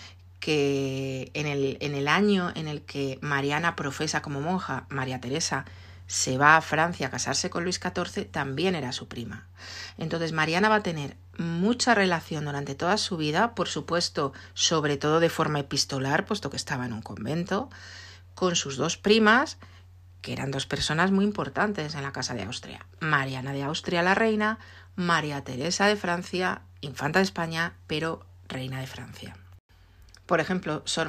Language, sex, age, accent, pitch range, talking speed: Spanish, female, 40-59, Spanish, 125-165 Hz, 165 wpm